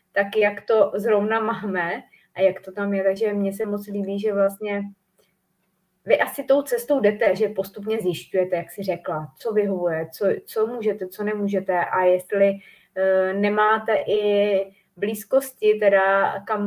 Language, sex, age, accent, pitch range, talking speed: Czech, female, 30-49, native, 185-210 Hz, 155 wpm